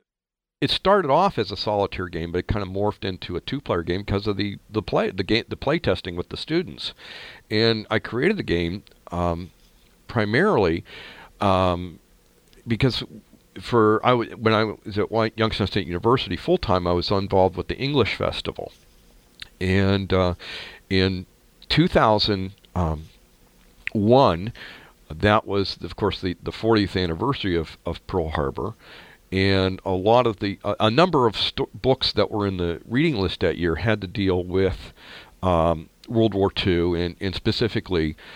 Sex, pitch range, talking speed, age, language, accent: male, 85-105 Hz, 160 wpm, 50-69, English, American